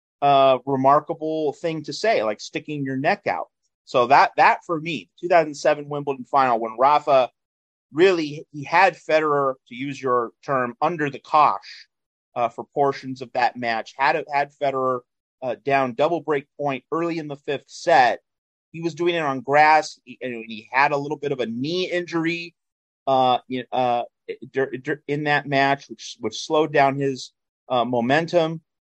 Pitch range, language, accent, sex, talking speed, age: 120-150 Hz, English, American, male, 165 wpm, 30-49